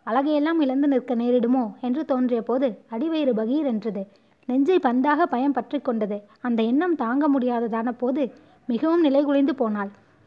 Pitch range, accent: 235-285 Hz, native